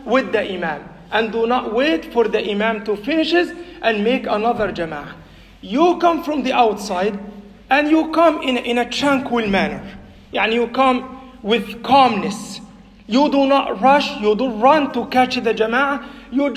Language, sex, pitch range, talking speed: English, male, 225-280 Hz, 170 wpm